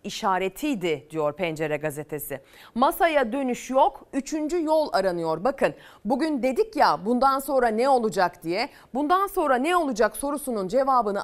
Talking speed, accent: 135 wpm, native